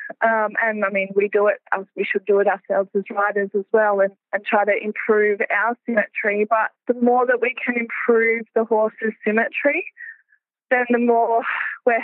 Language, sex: English, female